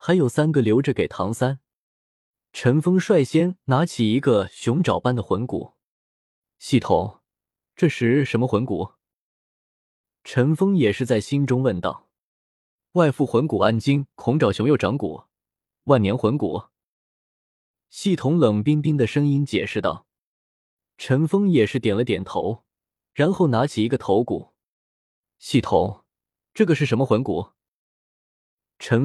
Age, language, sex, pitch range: 20-39, Chinese, male, 115-155 Hz